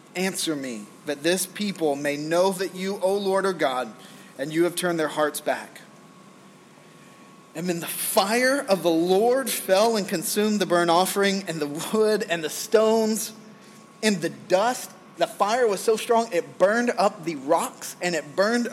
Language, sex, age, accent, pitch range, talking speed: English, male, 30-49, American, 160-215 Hz, 175 wpm